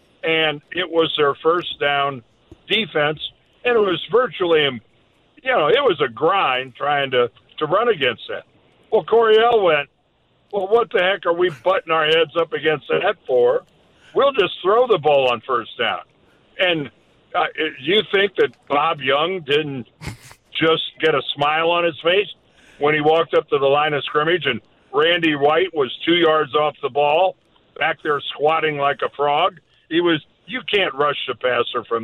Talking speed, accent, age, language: 175 wpm, American, 60-79, English